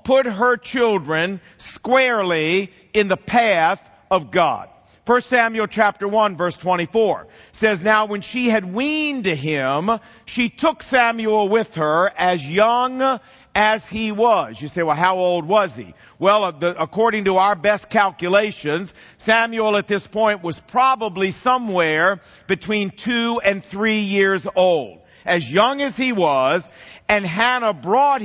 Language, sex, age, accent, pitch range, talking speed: English, male, 50-69, American, 185-235 Hz, 140 wpm